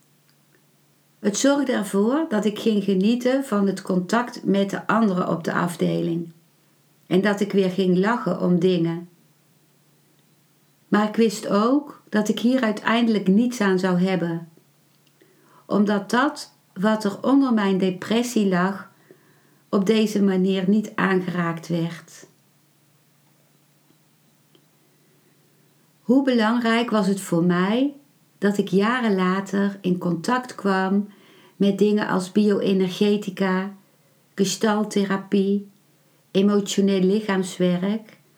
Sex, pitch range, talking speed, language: female, 180-220 Hz, 110 wpm, Dutch